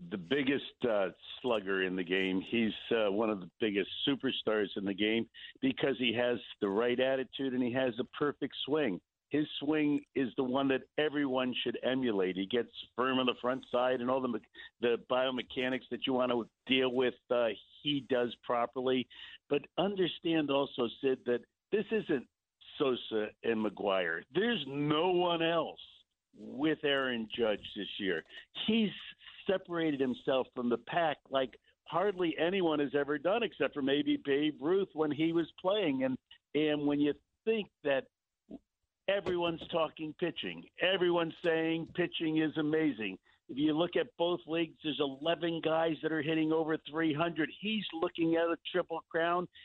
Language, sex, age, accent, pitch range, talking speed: English, male, 60-79, American, 130-170 Hz, 165 wpm